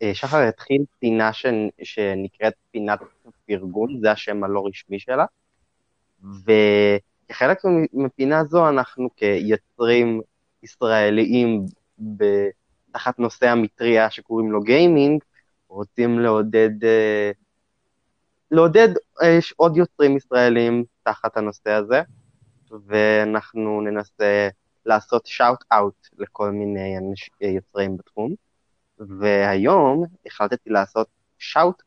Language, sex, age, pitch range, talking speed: Hebrew, male, 20-39, 100-120 Hz, 85 wpm